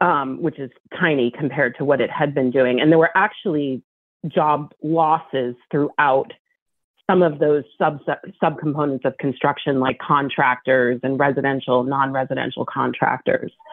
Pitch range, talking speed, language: 145-180 Hz, 135 wpm, English